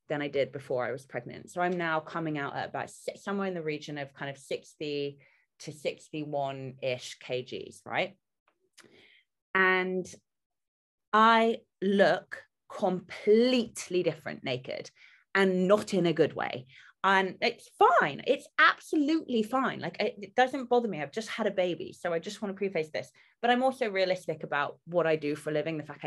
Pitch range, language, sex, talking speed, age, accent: 155-220 Hz, English, female, 175 wpm, 20-39, British